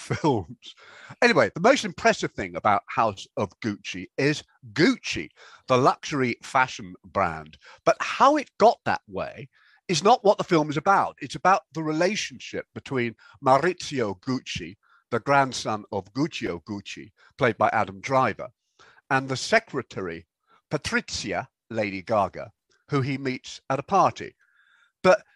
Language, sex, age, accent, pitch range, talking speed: English, male, 50-69, British, 125-185 Hz, 135 wpm